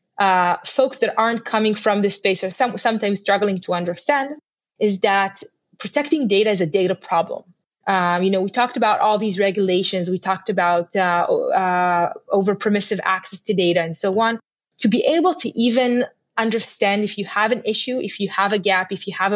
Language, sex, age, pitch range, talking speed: English, female, 20-39, 185-235 Hz, 195 wpm